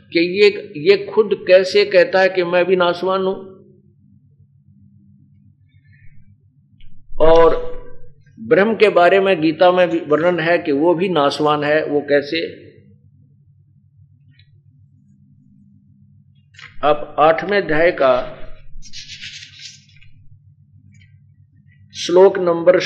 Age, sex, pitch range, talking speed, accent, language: 50-69, male, 130-180 Hz, 95 wpm, native, Hindi